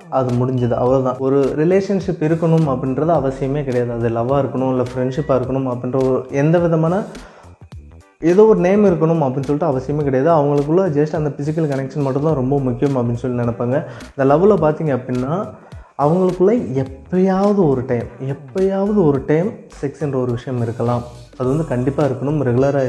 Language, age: Tamil, 20-39